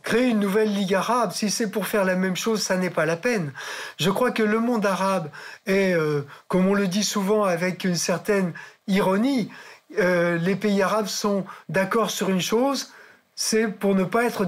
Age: 50-69